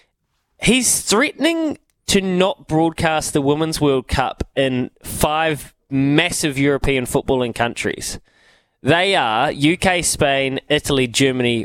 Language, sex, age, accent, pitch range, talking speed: English, male, 20-39, Australian, 125-165 Hz, 110 wpm